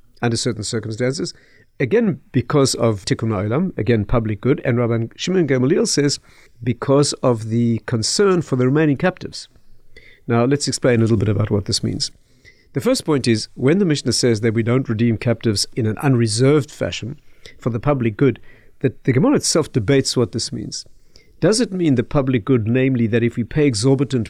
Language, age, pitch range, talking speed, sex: English, 50-69, 115-135 Hz, 185 wpm, male